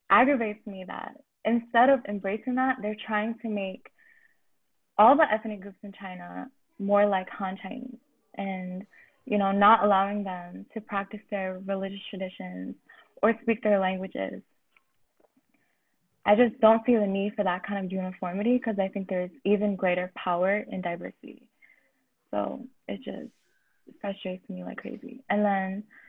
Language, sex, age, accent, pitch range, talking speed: English, female, 20-39, American, 190-230 Hz, 150 wpm